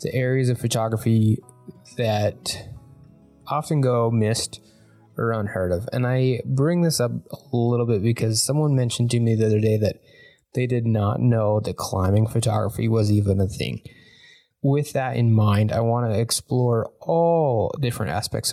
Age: 20-39